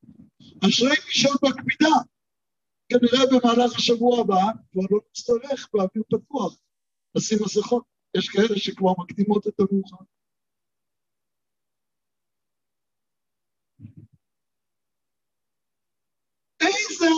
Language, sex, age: Hebrew, male, 60-79